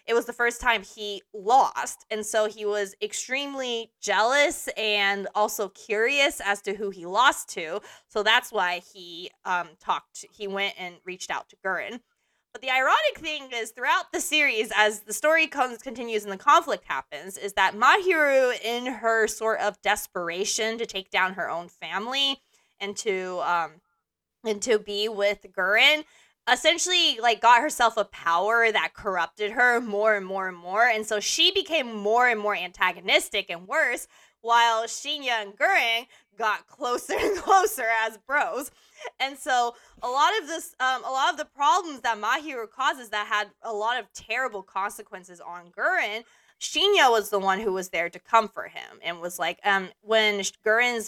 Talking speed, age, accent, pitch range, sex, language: 175 wpm, 20-39, American, 200-255 Hz, female, English